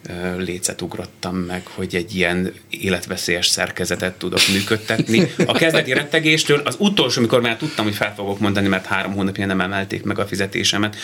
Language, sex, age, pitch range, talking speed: Hungarian, male, 30-49, 90-120 Hz, 165 wpm